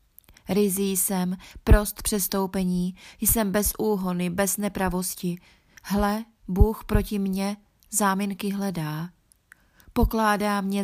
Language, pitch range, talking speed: Czech, 180-205 Hz, 95 wpm